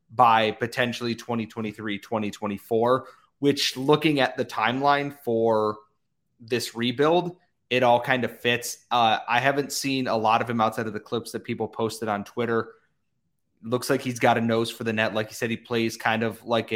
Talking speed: 180 wpm